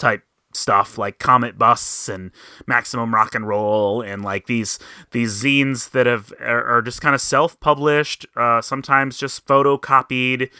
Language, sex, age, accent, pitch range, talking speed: English, male, 30-49, American, 120-145 Hz, 145 wpm